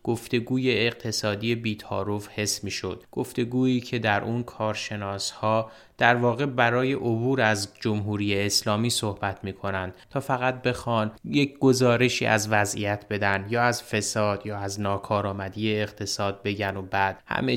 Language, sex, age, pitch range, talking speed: Persian, male, 30-49, 100-120 Hz, 135 wpm